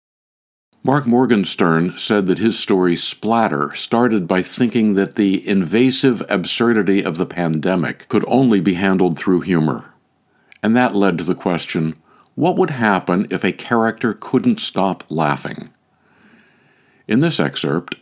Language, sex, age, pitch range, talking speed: English, male, 60-79, 80-110 Hz, 135 wpm